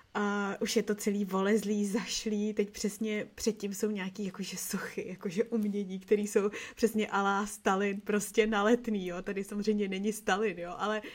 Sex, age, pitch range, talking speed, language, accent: female, 20-39, 195-215 Hz, 160 wpm, Czech, native